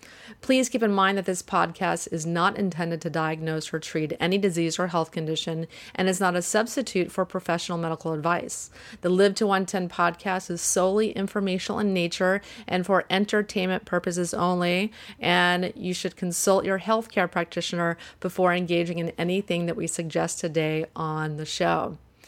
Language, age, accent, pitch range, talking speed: English, 30-49, American, 170-210 Hz, 165 wpm